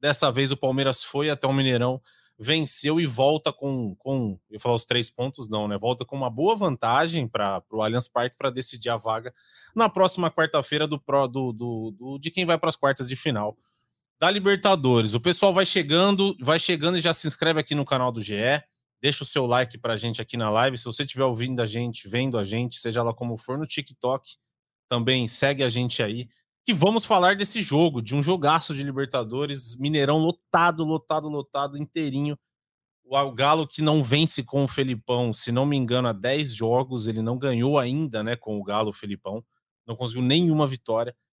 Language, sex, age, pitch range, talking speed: Portuguese, male, 20-39, 120-150 Hz, 200 wpm